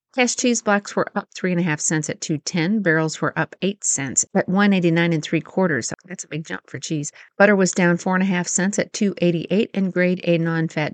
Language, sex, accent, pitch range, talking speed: English, female, American, 160-220 Hz, 245 wpm